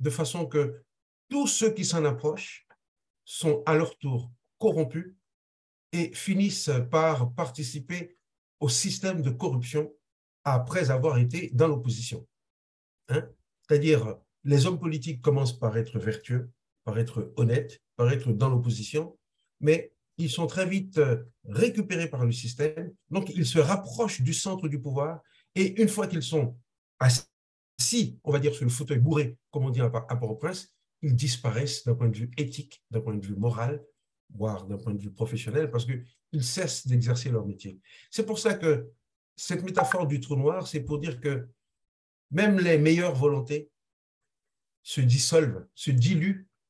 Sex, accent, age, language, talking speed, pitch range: male, French, 50-69, French, 160 wpm, 120-160 Hz